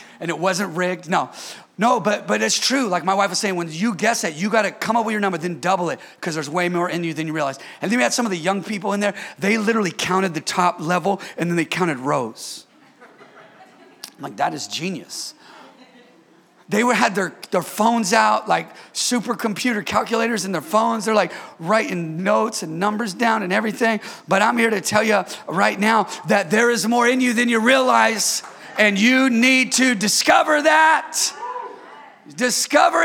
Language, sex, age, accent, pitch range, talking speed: English, male, 40-59, American, 195-300 Hz, 200 wpm